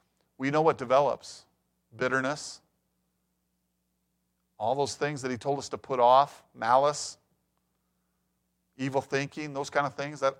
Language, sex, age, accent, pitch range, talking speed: English, male, 40-59, American, 120-155 Hz, 135 wpm